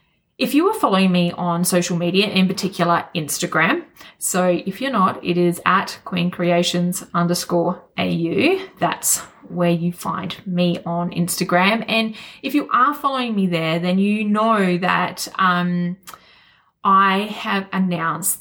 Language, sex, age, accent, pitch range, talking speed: English, female, 20-39, Australian, 175-220 Hz, 145 wpm